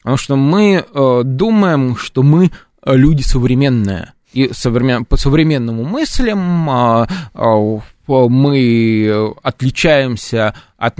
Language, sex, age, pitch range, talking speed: Russian, male, 20-39, 110-140 Hz, 80 wpm